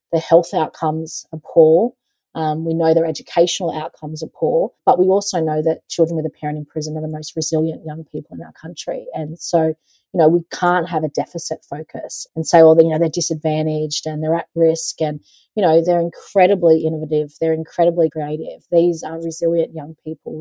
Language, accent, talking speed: English, Australian, 200 wpm